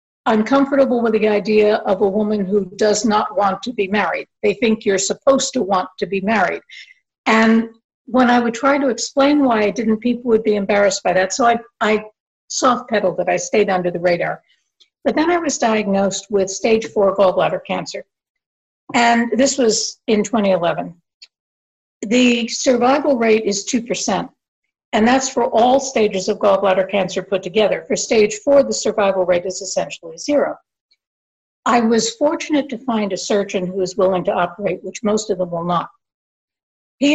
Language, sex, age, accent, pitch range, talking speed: English, female, 60-79, American, 195-240 Hz, 175 wpm